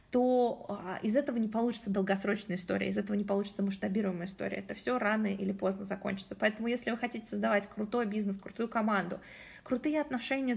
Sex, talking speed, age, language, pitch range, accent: female, 170 wpm, 20-39, Russian, 195-225 Hz, native